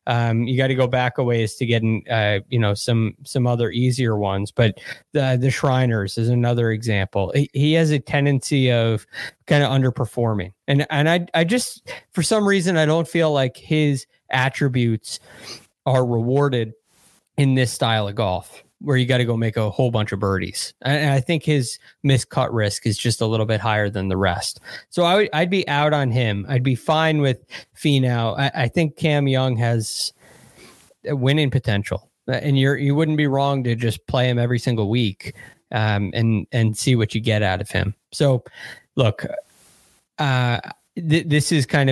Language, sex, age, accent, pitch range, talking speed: English, male, 20-39, American, 110-145 Hz, 190 wpm